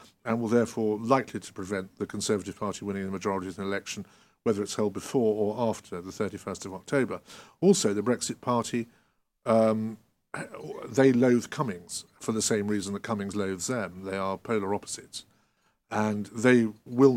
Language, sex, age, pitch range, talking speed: English, male, 50-69, 100-115 Hz, 170 wpm